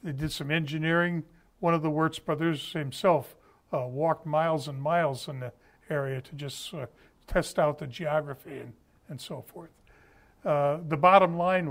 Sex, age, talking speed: male, 60-79, 170 wpm